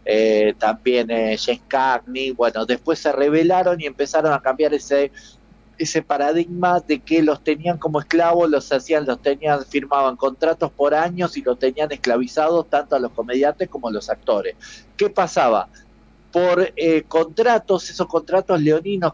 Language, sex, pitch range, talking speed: Spanish, male, 130-170 Hz, 155 wpm